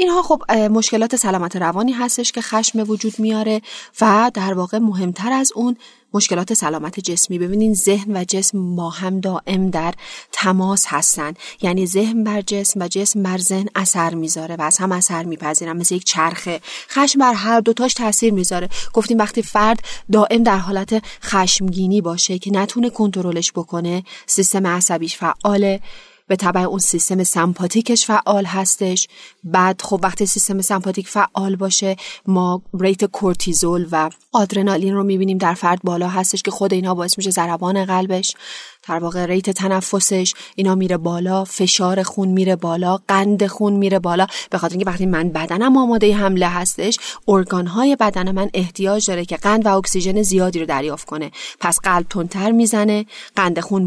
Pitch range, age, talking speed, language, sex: 180-210 Hz, 30-49, 160 wpm, Persian, female